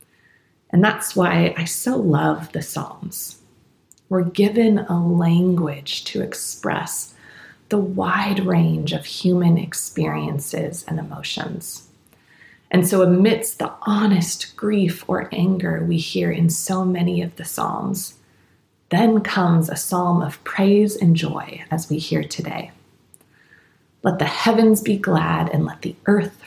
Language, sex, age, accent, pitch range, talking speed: English, female, 30-49, American, 165-200 Hz, 135 wpm